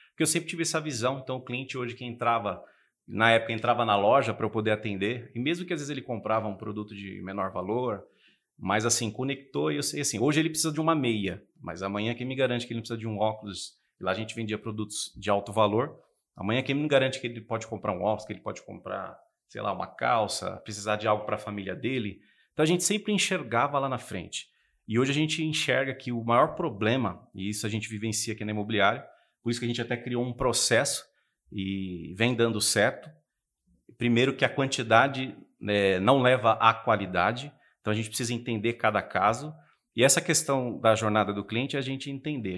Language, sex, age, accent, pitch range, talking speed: Portuguese, male, 30-49, Brazilian, 105-135 Hz, 220 wpm